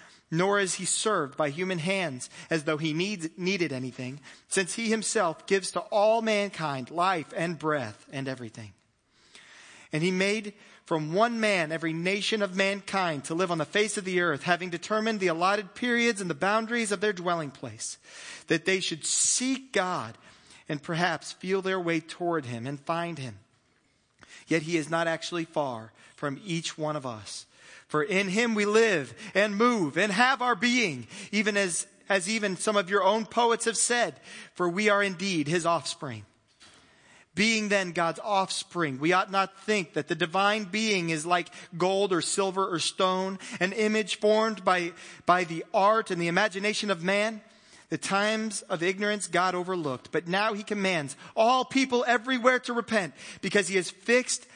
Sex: male